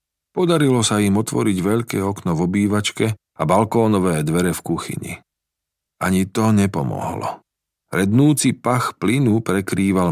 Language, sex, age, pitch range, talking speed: Slovak, male, 40-59, 75-110 Hz, 120 wpm